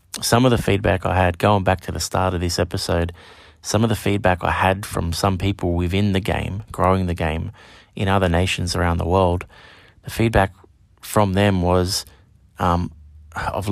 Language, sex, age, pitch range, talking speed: English, male, 20-39, 85-100 Hz, 185 wpm